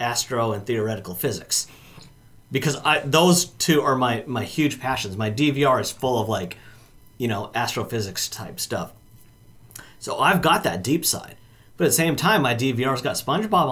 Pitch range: 110-145 Hz